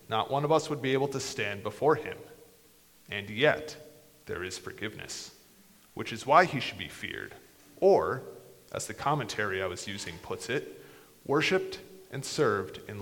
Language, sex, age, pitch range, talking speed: English, male, 30-49, 110-150 Hz, 165 wpm